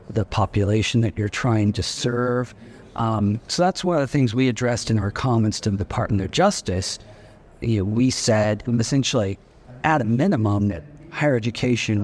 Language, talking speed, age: English, 175 wpm, 40-59